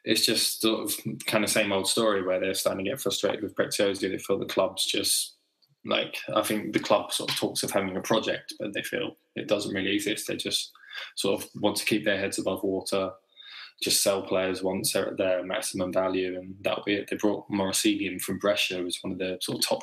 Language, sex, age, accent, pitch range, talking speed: English, male, 20-39, British, 95-100 Hz, 235 wpm